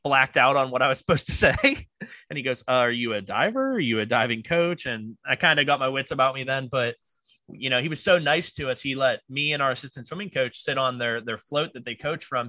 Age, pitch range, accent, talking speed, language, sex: 20-39, 120-150 Hz, American, 275 wpm, English, male